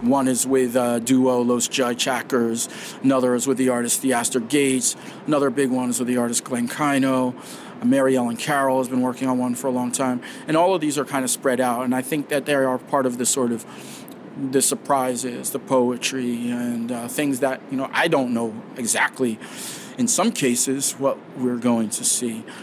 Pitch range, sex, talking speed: 125-145 Hz, male, 210 wpm